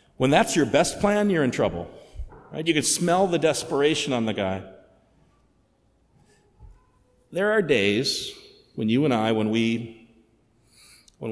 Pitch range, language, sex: 105-140 Hz, English, male